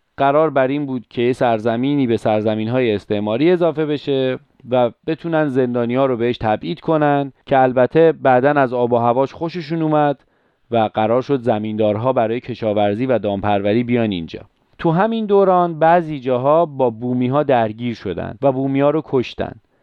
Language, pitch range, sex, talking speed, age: Persian, 120-155 Hz, male, 165 wpm, 30-49